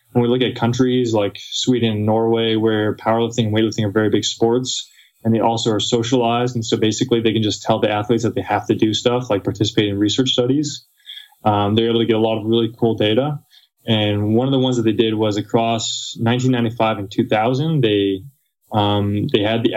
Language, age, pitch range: English, 20-39, 110-125 Hz